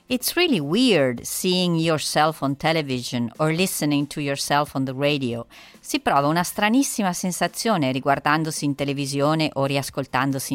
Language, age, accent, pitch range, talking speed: Italian, 40-59, native, 140-190 Hz, 135 wpm